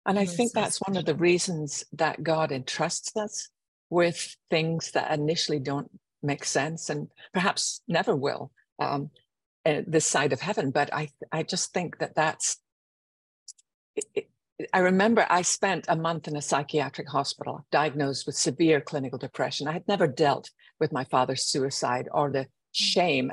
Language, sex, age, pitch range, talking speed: English, female, 50-69, 140-175 Hz, 160 wpm